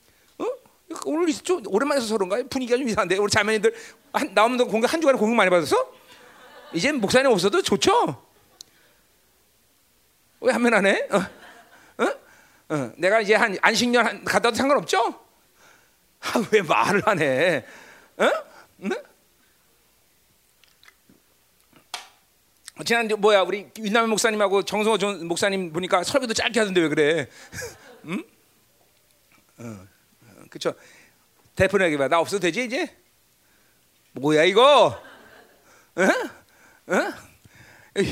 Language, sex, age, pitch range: Korean, male, 40-59, 195-300 Hz